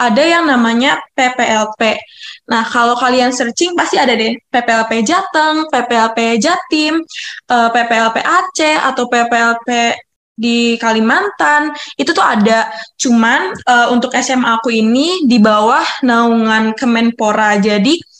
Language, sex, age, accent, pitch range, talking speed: Indonesian, female, 10-29, native, 230-270 Hz, 110 wpm